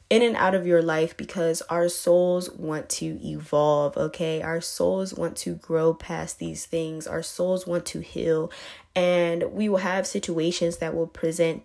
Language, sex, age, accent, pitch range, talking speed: English, female, 20-39, American, 165-200 Hz, 175 wpm